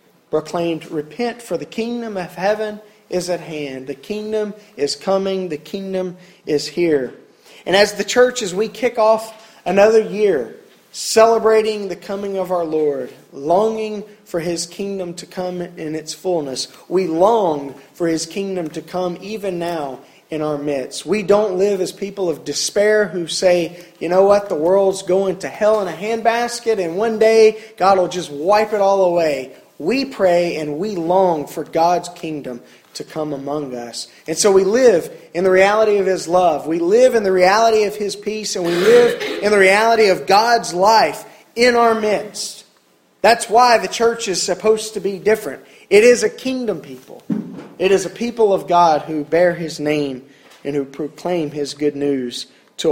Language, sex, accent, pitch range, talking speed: English, male, American, 160-215 Hz, 180 wpm